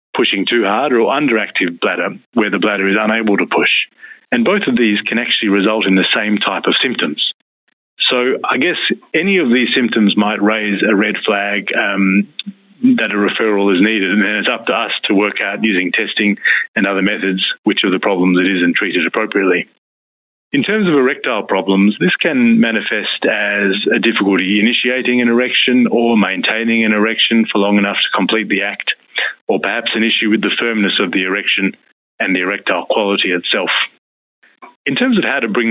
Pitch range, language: 100-125 Hz, English